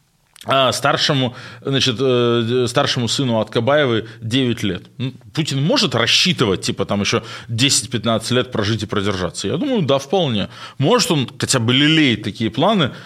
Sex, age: male, 20-39